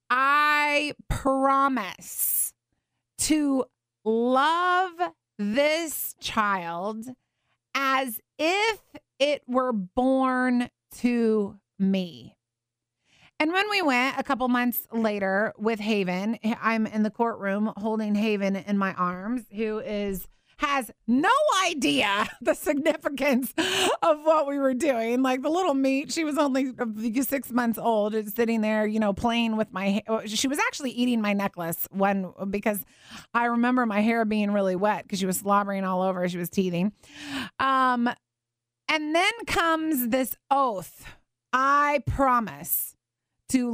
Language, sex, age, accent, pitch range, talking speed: English, female, 30-49, American, 205-275 Hz, 130 wpm